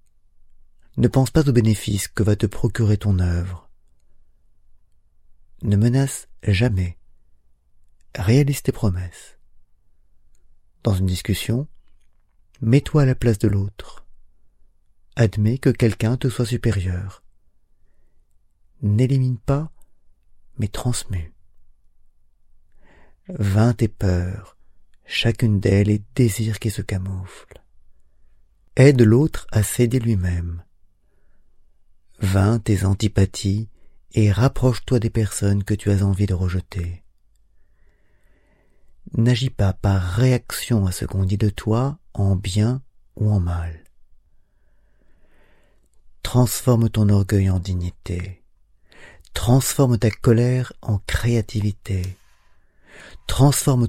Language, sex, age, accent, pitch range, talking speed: French, male, 40-59, French, 90-115 Hz, 100 wpm